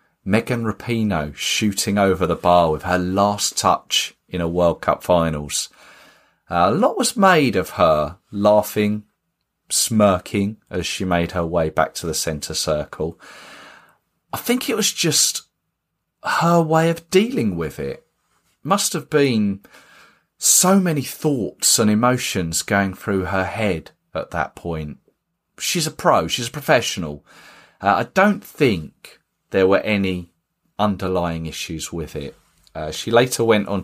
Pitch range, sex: 85-120 Hz, male